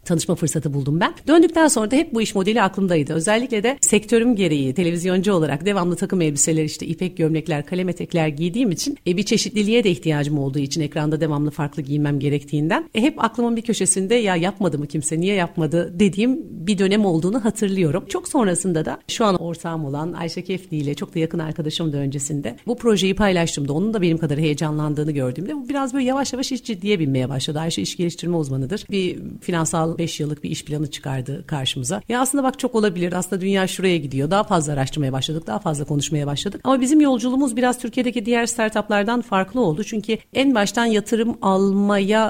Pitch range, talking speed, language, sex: 155-210 Hz, 190 wpm, Turkish, female